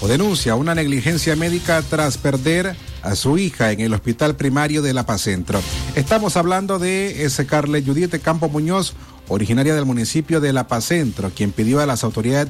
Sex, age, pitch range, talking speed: male, 40-59, 115-160 Hz, 175 wpm